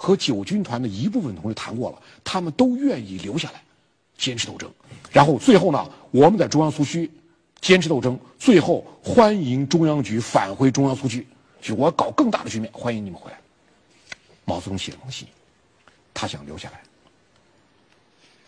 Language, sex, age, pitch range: Chinese, male, 50-69, 110-150 Hz